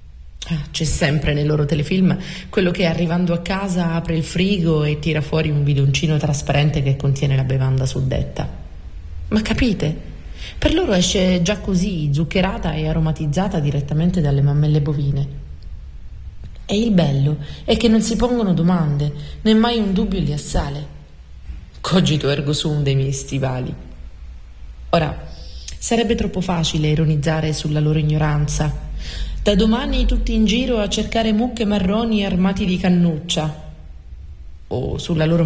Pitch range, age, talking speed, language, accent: 140-180 Hz, 30-49, 140 wpm, Italian, native